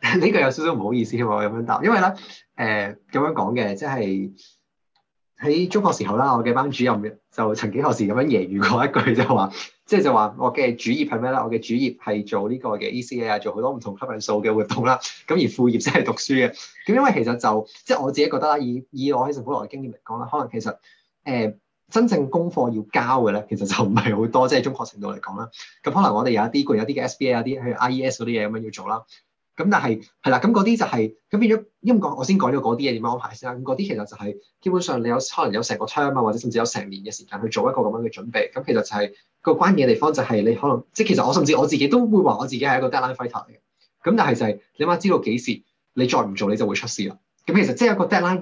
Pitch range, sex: 110-150 Hz, male